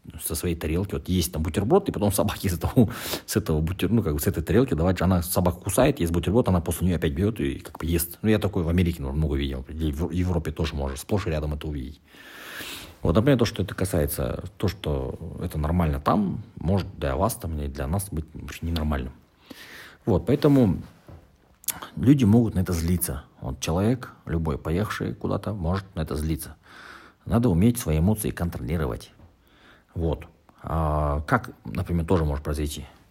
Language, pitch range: Russian, 80-100 Hz